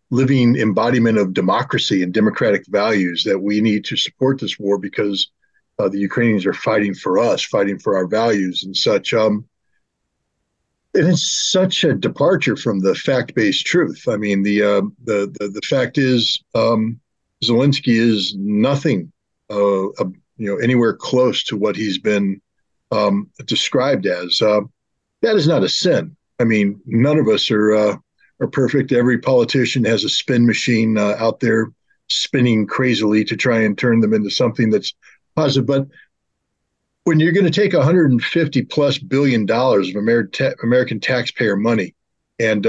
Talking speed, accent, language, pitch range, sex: 160 wpm, American, English, 100-130 Hz, male